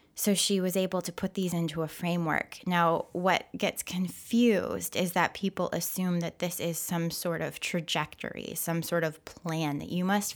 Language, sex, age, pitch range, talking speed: English, female, 20-39, 165-200 Hz, 185 wpm